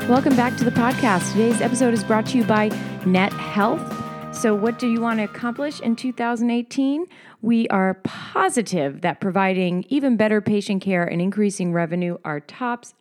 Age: 30-49